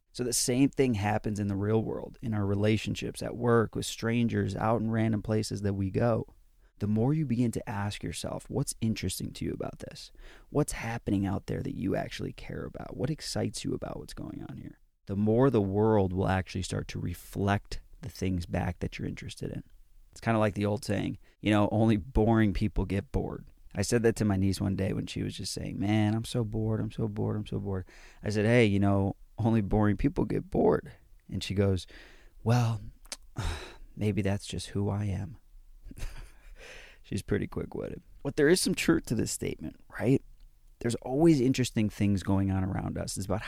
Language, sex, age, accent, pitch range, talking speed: English, male, 30-49, American, 95-115 Hz, 205 wpm